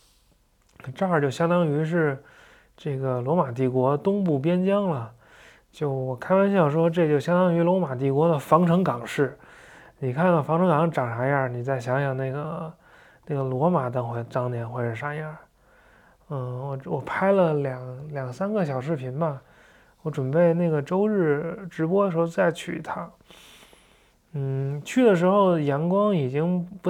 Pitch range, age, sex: 140-175 Hz, 20-39, male